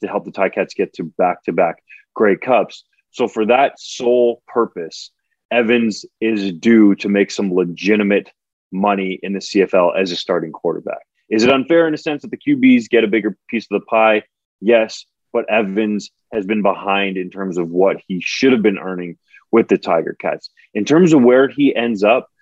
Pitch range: 100-115 Hz